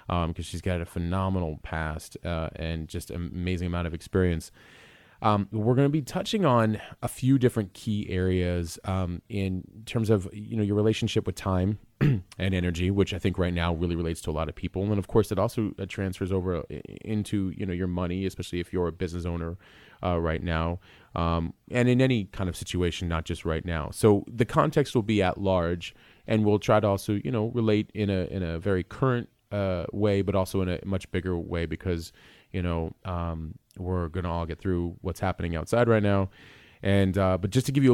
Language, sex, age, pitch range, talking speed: English, male, 30-49, 85-105 Hz, 210 wpm